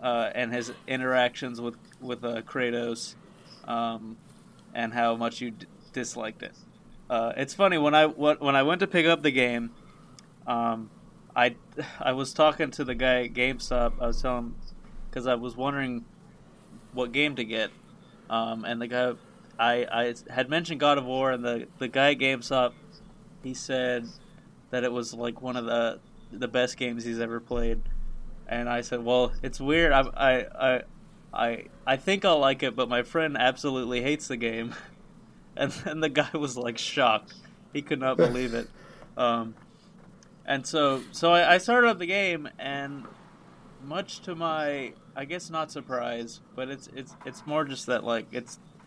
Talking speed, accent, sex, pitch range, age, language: 175 wpm, American, male, 120-145 Hz, 20-39, English